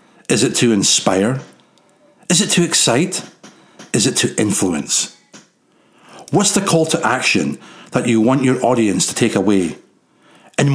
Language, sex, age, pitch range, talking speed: English, male, 60-79, 110-150 Hz, 145 wpm